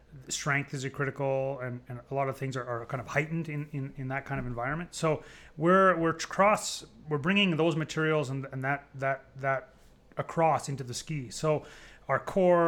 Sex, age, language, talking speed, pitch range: male, 30-49, English, 195 wpm, 125-150 Hz